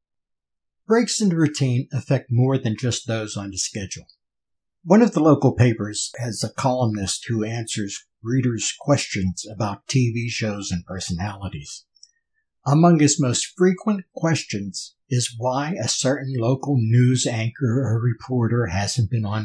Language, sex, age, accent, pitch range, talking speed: English, male, 60-79, American, 110-145 Hz, 140 wpm